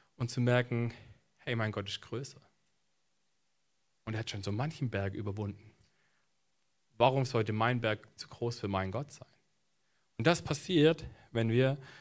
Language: German